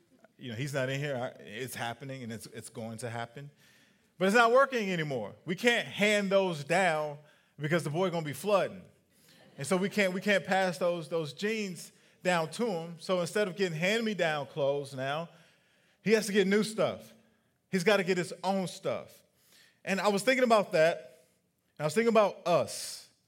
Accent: American